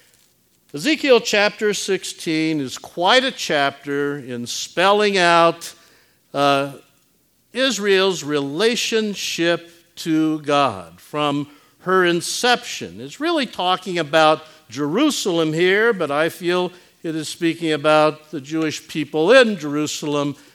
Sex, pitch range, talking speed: male, 155-195 Hz, 105 wpm